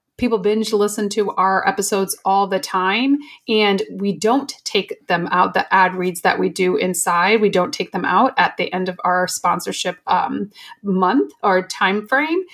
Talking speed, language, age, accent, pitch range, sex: 180 wpm, English, 30-49, American, 190-240 Hz, female